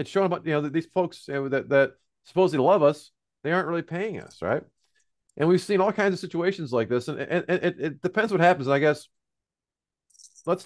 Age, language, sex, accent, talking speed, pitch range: 40-59, English, male, American, 220 wpm, 120-155 Hz